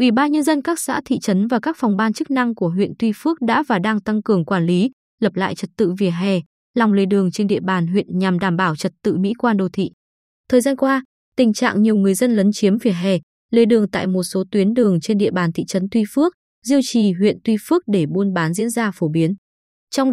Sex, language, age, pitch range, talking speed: female, Vietnamese, 20-39, 195-250 Hz, 255 wpm